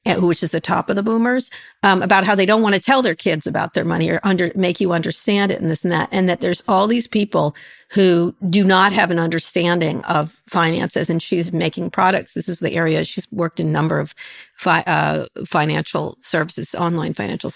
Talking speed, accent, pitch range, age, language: 220 wpm, American, 170-205 Hz, 50-69, English